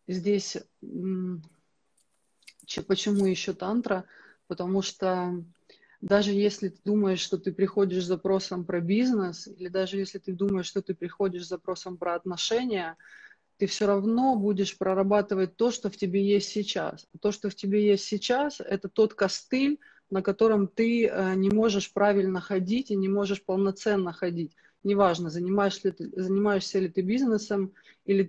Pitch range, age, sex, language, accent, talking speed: 180-205 Hz, 30-49, female, Russian, native, 145 wpm